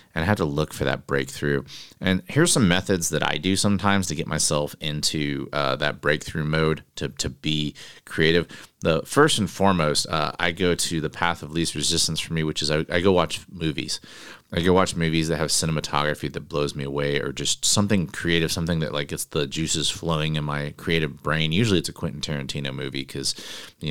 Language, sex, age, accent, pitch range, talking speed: English, male, 30-49, American, 75-90 Hz, 210 wpm